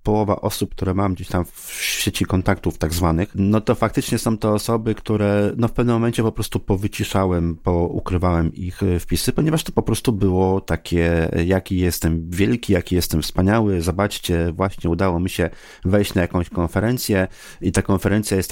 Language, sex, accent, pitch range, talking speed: Polish, male, native, 90-110 Hz, 170 wpm